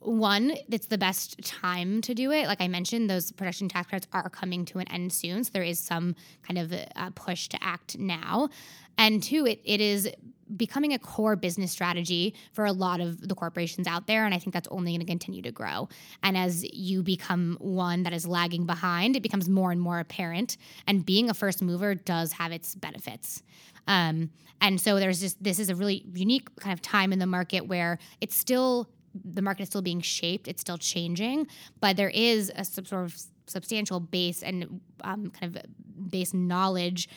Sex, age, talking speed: female, 20-39, 205 wpm